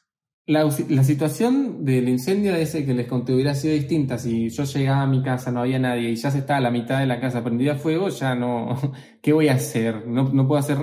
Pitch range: 130-180 Hz